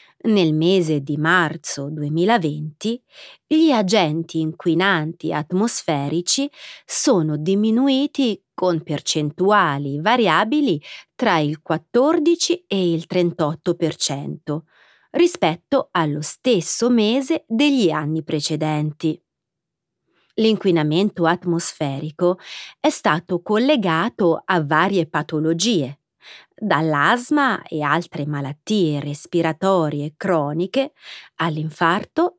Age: 30-49